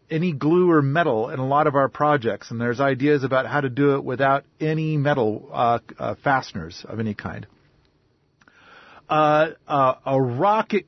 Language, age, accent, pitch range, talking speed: English, 40-59, American, 135-190 Hz, 170 wpm